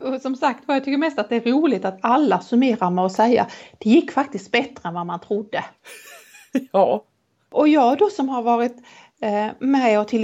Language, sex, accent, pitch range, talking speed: Swedish, female, native, 200-280 Hz, 210 wpm